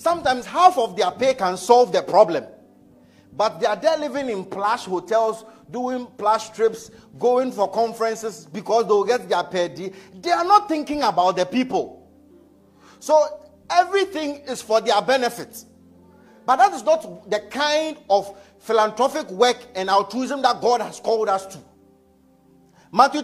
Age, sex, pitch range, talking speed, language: 50-69, male, 195-255 Hz, 150 wpm, English